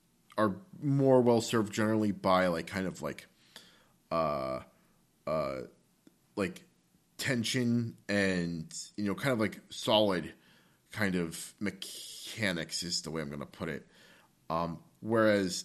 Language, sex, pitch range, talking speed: English, male, 90-125 Hz, 130 wpm